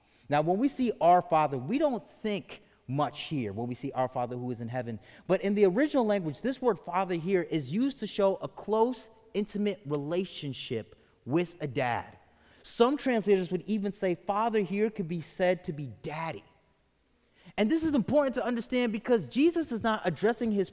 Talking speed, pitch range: 190 wpm, 130-200 Hz